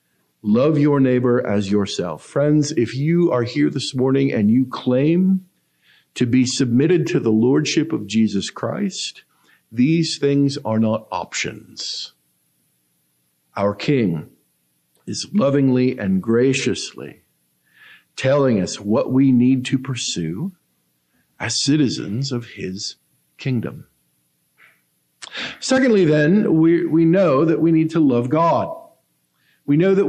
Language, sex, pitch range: English, male, 110-155 Hz